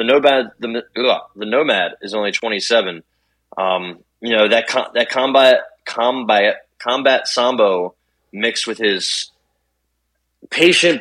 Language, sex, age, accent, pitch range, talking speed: English, male, 20-39, American, 105-145 Hz, 125 wpm